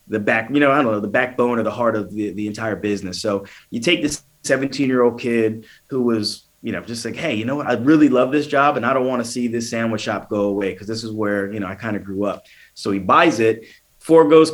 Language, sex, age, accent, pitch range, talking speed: English, male, 30-49, American, 110-135 Hz, 275 wpm